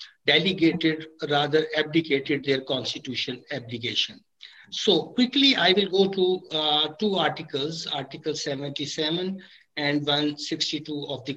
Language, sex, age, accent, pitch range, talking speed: English, male, 60-79, Indian, 150-185 Hz, 110 wpm